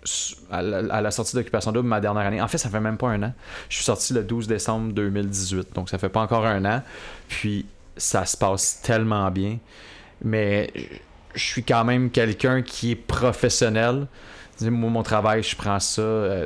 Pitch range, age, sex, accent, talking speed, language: 105-125 Hz, 30-49, male, Canadian, 185 wpm, English